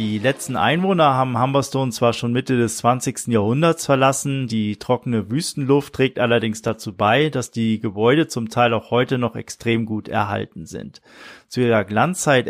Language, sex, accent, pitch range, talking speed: German, male, German, 115-140 Hz, 165 wpm